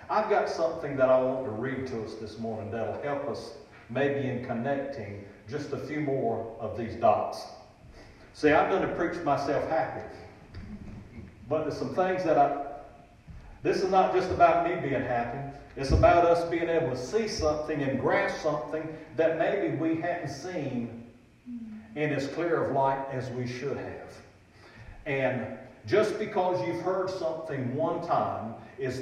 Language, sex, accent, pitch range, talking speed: English, male, American, 110-160 Hz, 165 wpm